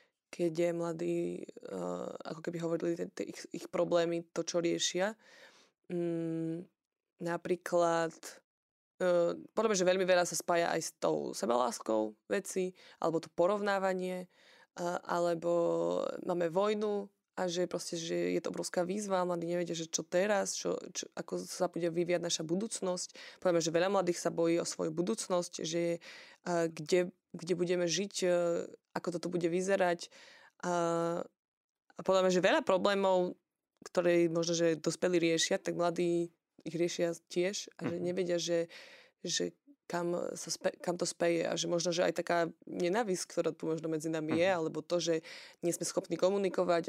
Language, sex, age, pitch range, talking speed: Slovak, female, 20-39, 170-180 Hz, 160 wpm